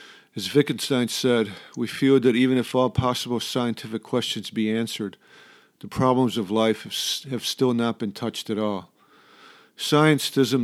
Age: 50-69